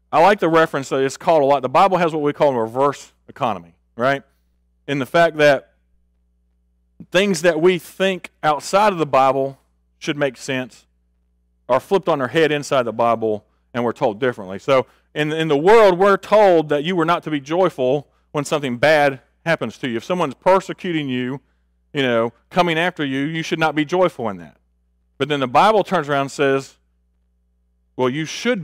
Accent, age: American, 40-59